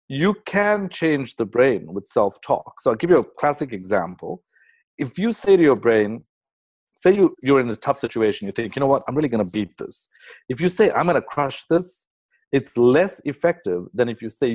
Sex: male